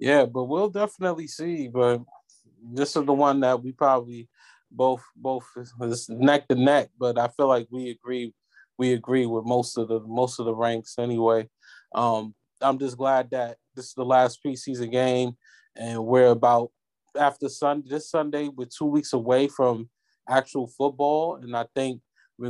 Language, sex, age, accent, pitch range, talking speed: English, male, 20-39, American, 125-150 Hz, 170 wpm